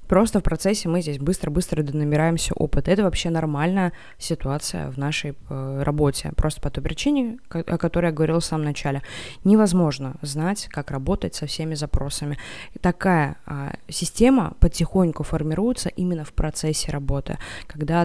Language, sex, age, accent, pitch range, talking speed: Russian, female, 20-39, native, 145-180 Hz, 145 wpm